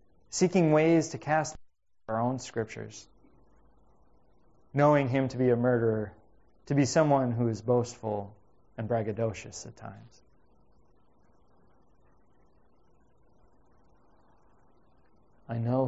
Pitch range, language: 125-165 Hz, English